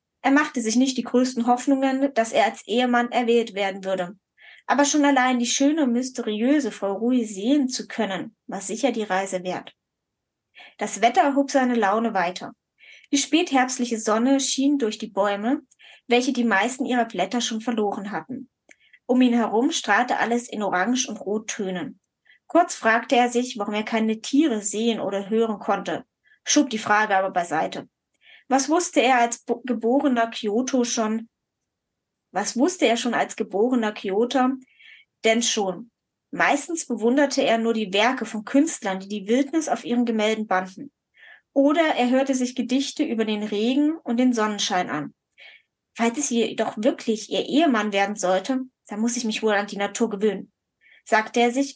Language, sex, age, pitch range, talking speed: German, female, 10-29, 215-260 Hz, 165 wpm